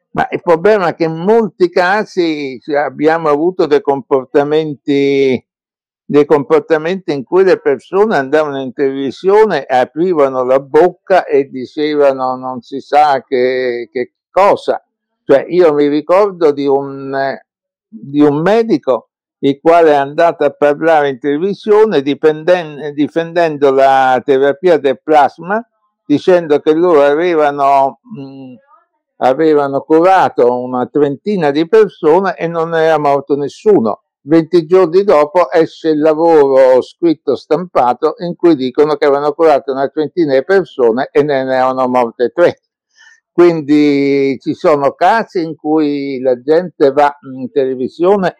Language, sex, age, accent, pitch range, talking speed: Italian, male, 60-79, native, 135-180 Hz, 130 wpm